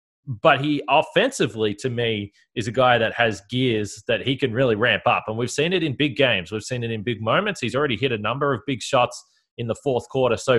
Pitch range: 115-145 Hz